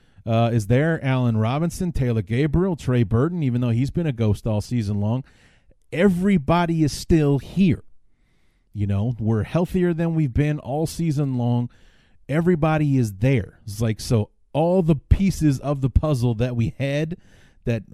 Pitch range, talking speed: 105-135 Hz, 160 wpm